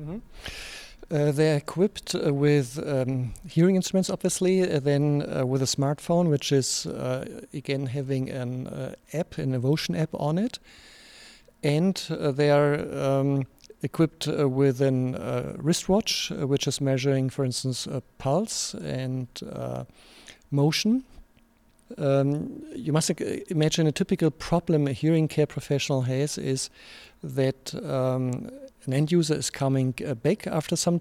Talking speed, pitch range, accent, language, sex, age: 145 wpm, 130-155 Hz, German, Danish, male, 50-69